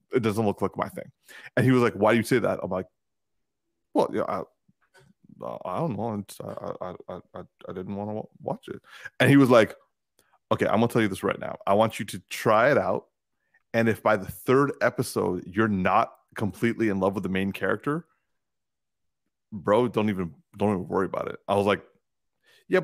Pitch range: 100-130 Hz